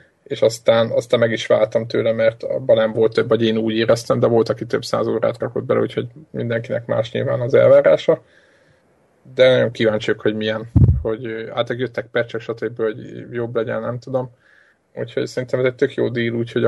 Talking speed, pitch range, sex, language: 190 wpm, 115-130 Hz, male, Hungarian